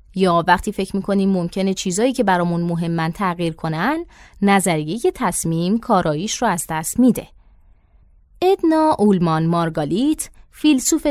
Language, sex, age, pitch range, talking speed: Persian, female, 20-39, 180-245 Hz, 120 wpm